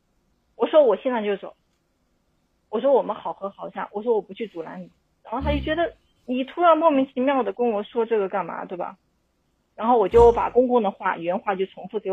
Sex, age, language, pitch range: female, 30-49, Chinese, 185-245 Hz